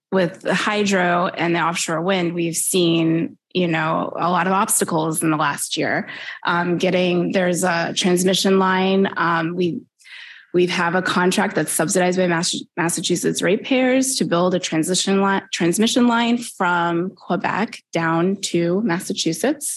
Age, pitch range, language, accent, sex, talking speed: 20-39, 165-195 Hz, English, American, female, 150 wpm